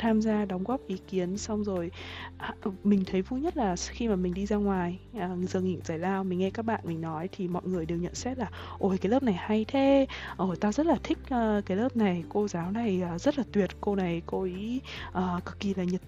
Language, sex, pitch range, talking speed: Vietnamese, female, 180-235 Hz, 260 wpm